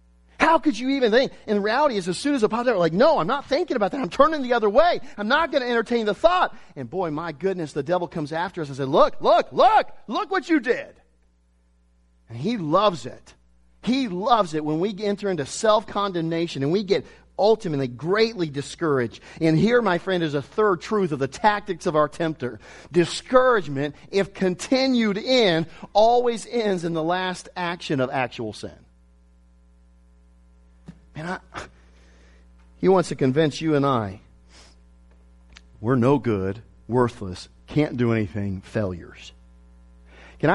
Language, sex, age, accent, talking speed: English, male, 40-59, American, 165 wpm